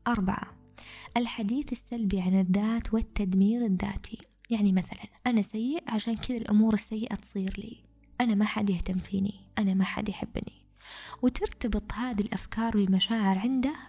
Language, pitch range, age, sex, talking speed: Arabic, 200-240 Hz, 20-39, female, 135 wpm